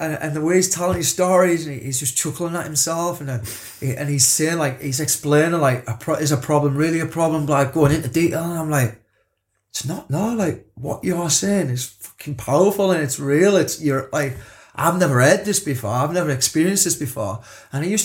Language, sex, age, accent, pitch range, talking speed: English, male, 20-39, British, 130-170 Hz, 215 wpm